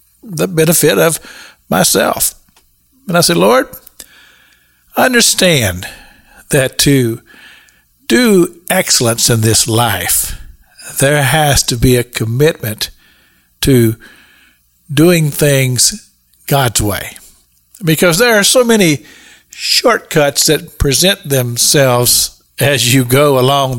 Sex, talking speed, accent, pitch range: male, 100 wpm, American, 120-160 Hz